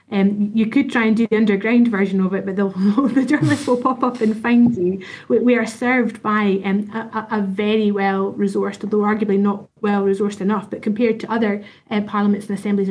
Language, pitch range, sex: English, 200-220 Hz, female